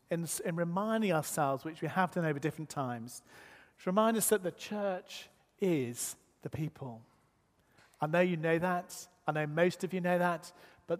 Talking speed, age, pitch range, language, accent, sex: 180 wpm, 40-59, 145-185 Hz, English, British, male